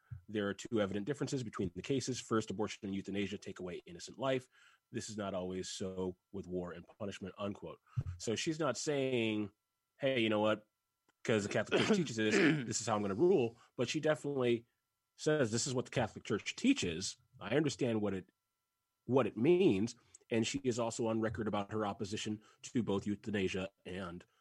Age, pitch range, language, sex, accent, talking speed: 30-49, 100-120 Hz, English, male, American, 190 wpm